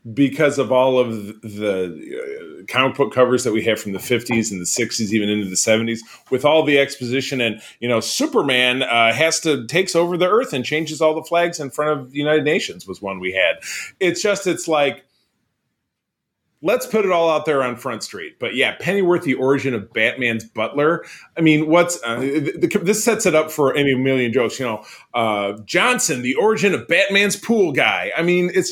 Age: 30-49